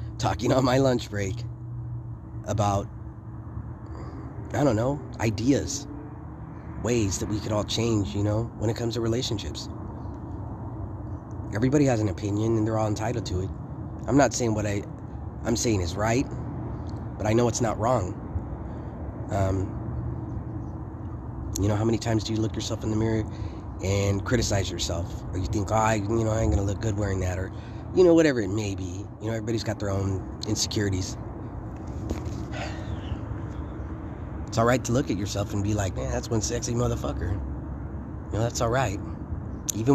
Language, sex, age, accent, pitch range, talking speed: English, male, 30-49, American, 100-115 Hz, 170 wpm